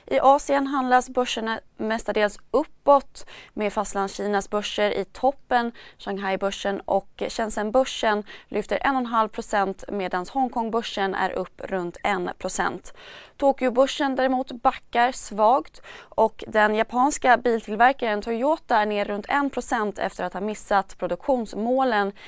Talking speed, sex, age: 115 wpm, female, 20-39